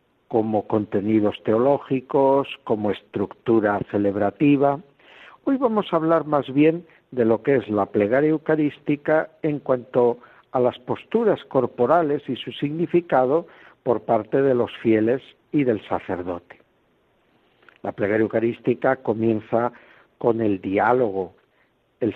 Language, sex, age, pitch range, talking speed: Spanish, male, 60-79, 100-130 Hz, 120 wpm